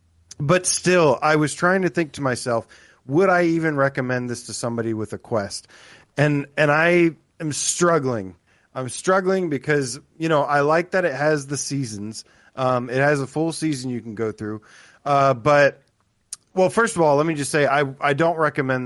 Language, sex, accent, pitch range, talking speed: English, male, American, 120-155 Hz, 190 wpm